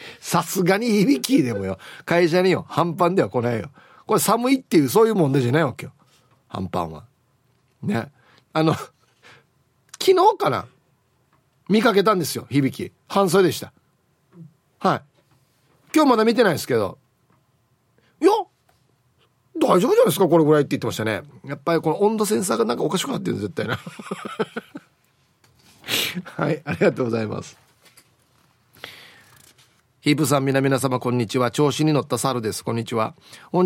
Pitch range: 125-170 Hz